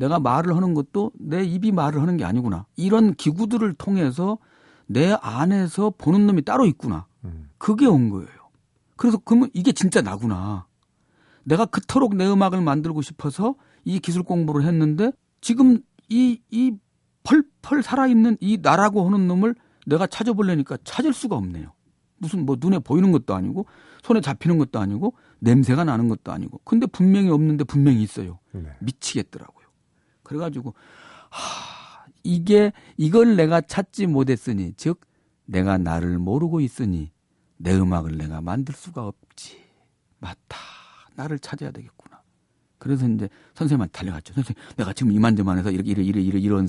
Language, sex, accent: Korean, male, native